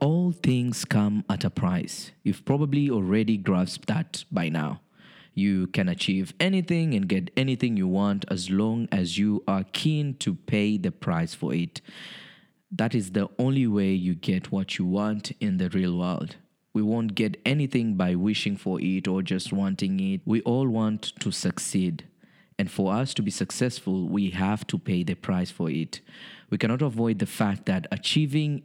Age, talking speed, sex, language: 20-39, 180 wpm, male, English